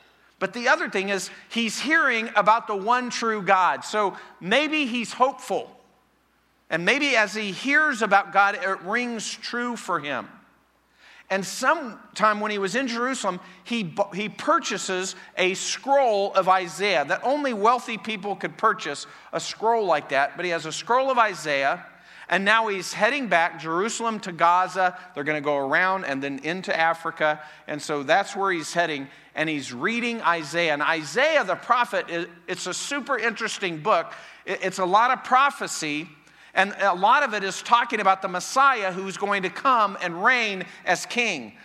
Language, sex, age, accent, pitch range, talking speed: English, male, 50-69, American, 175-230 Hz, 170 wpm